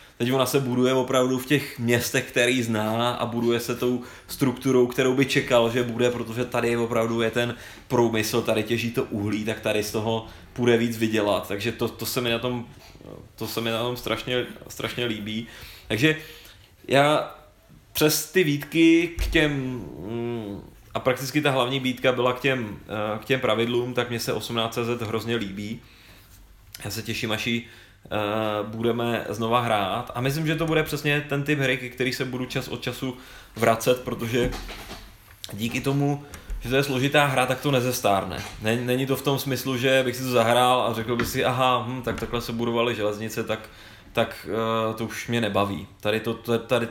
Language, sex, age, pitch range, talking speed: Czech, male, 20-39, 110-130 Hz, 180 wpm